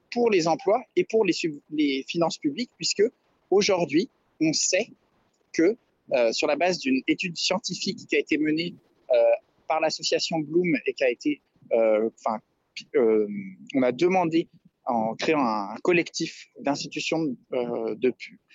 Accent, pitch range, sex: French, 150-220 Hz, male